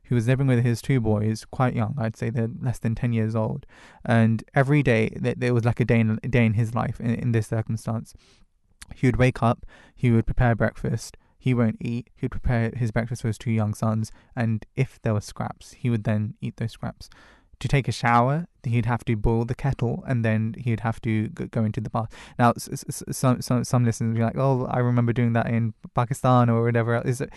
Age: 20-39